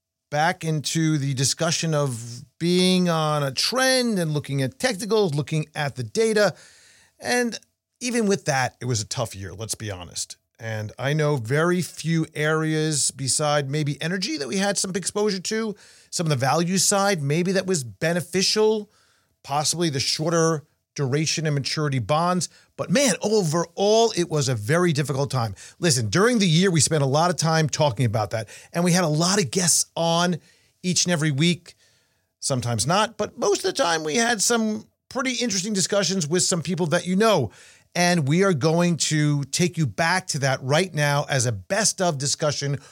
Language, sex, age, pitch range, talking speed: English, male, 40-59, 140-185 Hz, 180 wpm